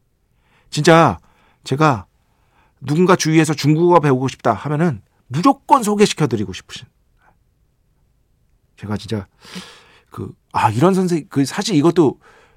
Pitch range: 120-180 Hz